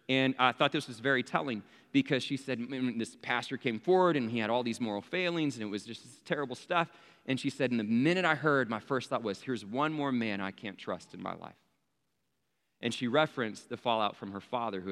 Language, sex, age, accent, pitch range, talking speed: English, male, 30-49, American, 110-145 Hz, 235 wpm